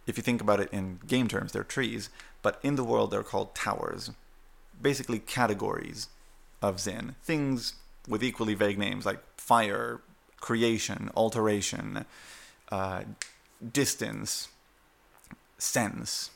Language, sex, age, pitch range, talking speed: English, male, 30-49, 95-120 Hz, 120 wpm